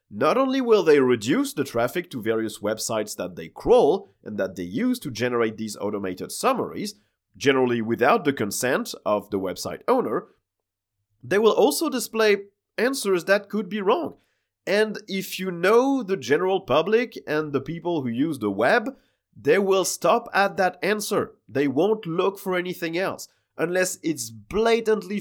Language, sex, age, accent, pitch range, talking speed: English, male, 30-49, French, 135-200 Hz, 160 wpm